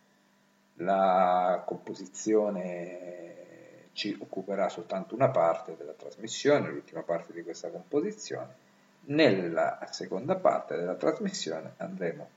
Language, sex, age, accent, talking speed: Italian, male, 50-69, native, 95 wpm